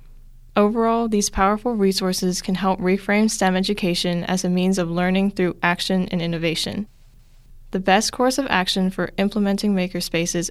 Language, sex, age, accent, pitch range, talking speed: English, female, 10-29, American, 175-205 Hz, 150 wpm